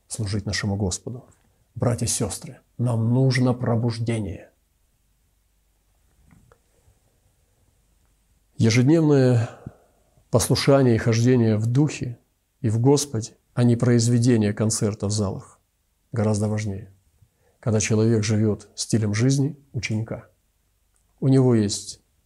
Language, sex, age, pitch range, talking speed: Russian, male, 40-59, 105-125 Hz, 95 wpm